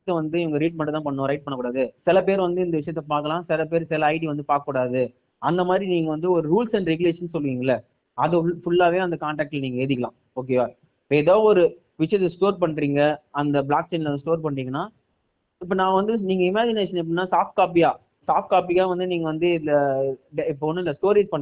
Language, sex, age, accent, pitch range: Tamil, male, 20-39, native, 145-185 Hz